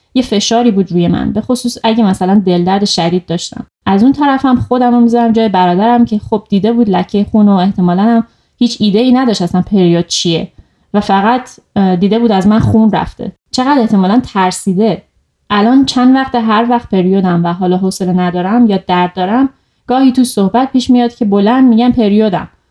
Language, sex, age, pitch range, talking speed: Persian, female, 30-49, 190-245 Hz, 175 wpm